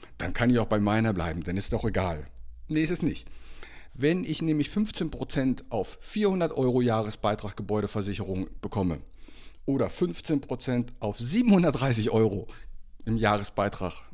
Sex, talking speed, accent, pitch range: male, 130 wpm, German, 105-135 Hz